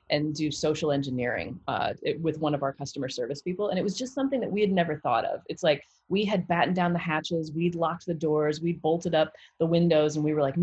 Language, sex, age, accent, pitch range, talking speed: English, female, 30-49, American, 145-175 Hz, 255 wpm